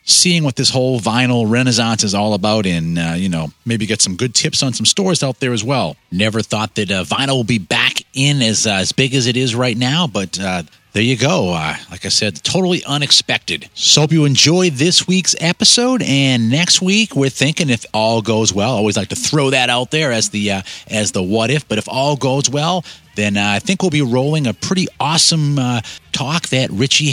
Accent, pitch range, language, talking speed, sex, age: American, 105-135 Hz, English, 230 wpm, male, 30-49